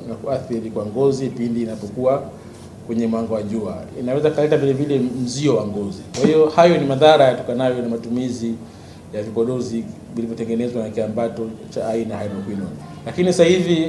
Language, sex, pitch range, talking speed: Swahili, male, 115-135 Hz, 155 wpm